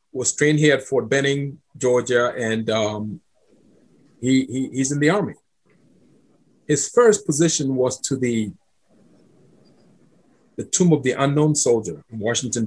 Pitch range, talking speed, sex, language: 130-170 Hz, 130 wpm, male, English